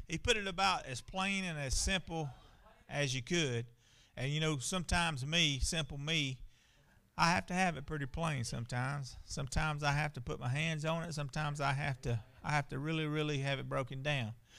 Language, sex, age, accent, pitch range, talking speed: English, male, 40-59, American, 130-170 Hz, 200 wpm